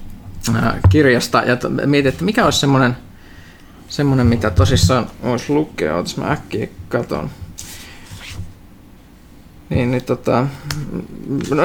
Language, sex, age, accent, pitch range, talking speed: Finnish, male, 20-39, native, 125-175 Hz, 110 wpm